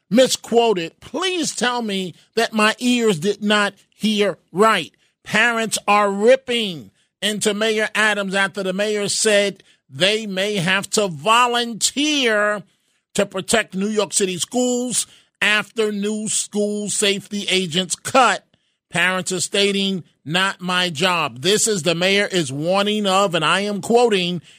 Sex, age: male, 40-59